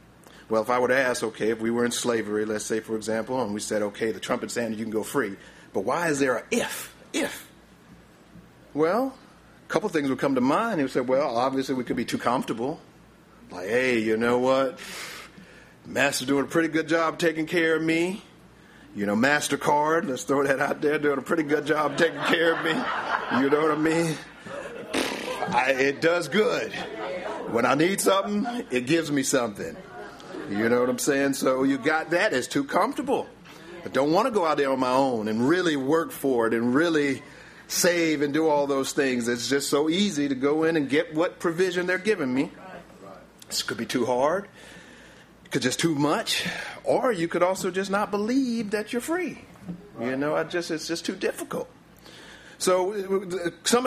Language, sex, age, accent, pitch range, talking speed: English, male, 50-69, American, 135-175 Hz, 200 wpm